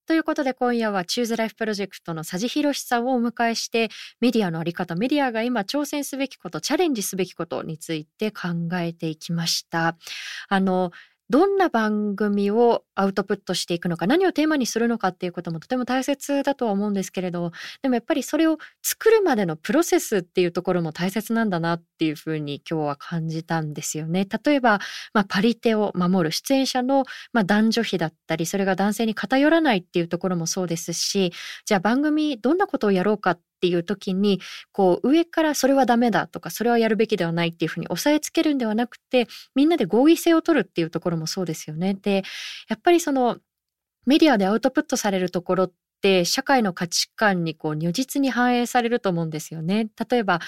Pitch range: 175-245 Hz